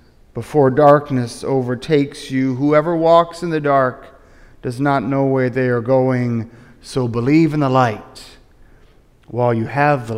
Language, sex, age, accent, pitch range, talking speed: English, male, 40-59, American, 125-160 Hz, 145 wpm